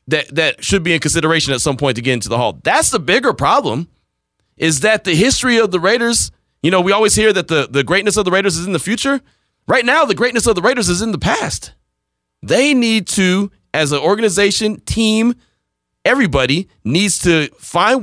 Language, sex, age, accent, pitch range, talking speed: English, male, 30-49, American, 145-220 Hz, 210 wpm